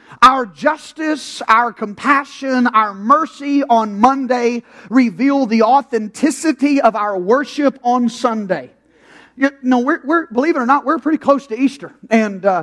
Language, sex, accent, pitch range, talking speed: English, male, American, 225-275 Hz, 140 wpm